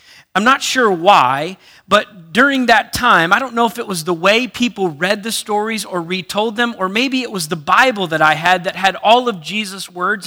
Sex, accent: male, American